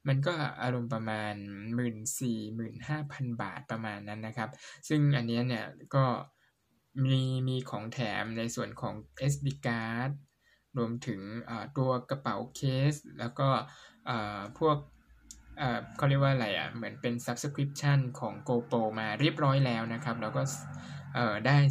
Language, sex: Thai, male